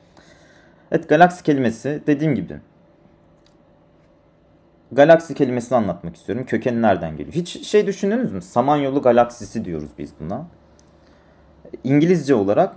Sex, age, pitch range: male, 30-49, 95-145 Hz